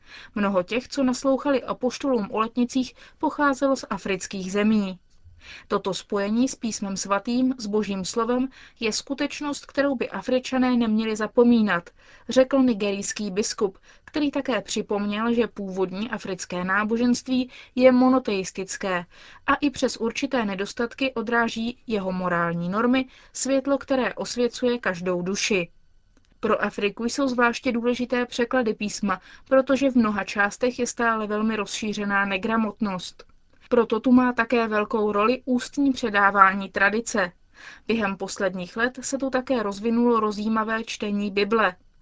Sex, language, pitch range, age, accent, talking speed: female, Czech, 200-250 Hz, 20-39, native, 125 wpm